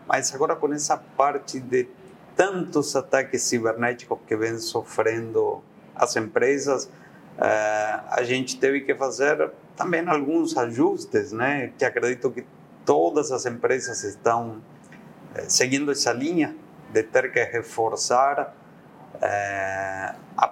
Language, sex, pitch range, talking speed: Portuguese, male, 120-160 Hz, 110 wpm